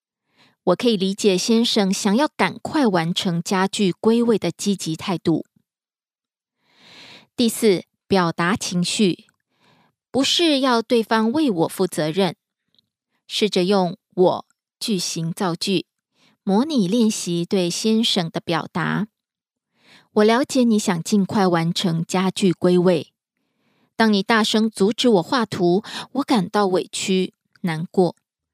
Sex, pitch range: female, 180-230 Hz